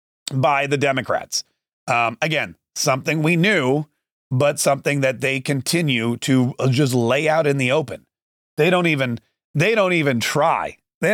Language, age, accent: English, 30-49, American